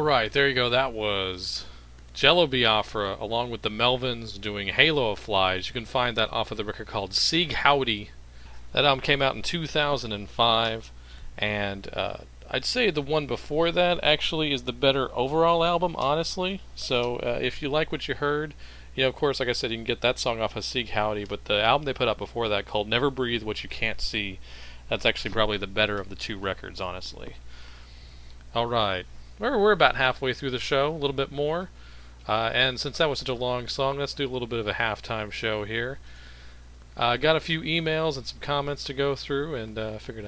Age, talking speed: 40-59, 210 wpm